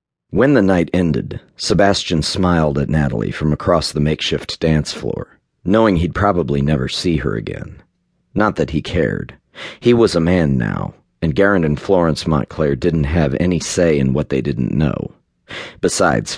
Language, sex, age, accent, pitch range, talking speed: English, male, 40-59, American, 70-85 Hz, 165 wpm